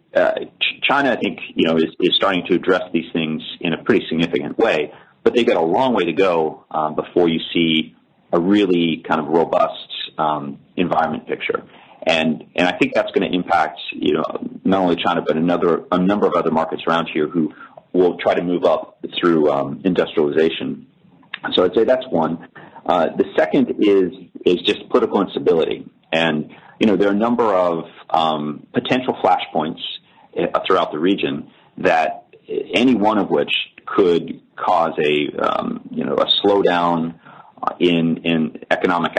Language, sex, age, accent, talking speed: English, male, 30-49, American, 170 wpm